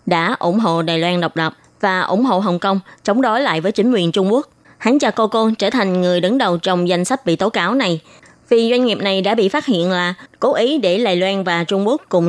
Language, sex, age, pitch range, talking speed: Vietnamese, female, 20-39, 180-225 Hz, 260 wpm